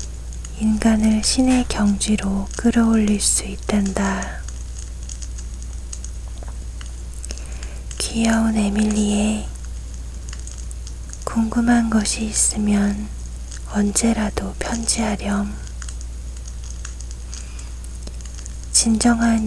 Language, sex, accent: Korean, female, native